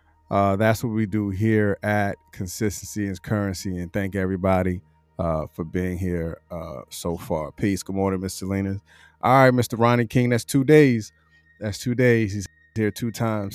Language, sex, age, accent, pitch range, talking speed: English, male, 30-49, American, 95-125 Hz, 175 wpm